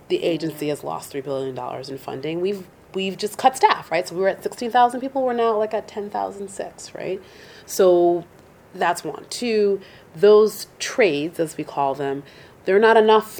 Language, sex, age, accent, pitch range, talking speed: English, female, 30-49, American, 155-205 Hz, 175 wpm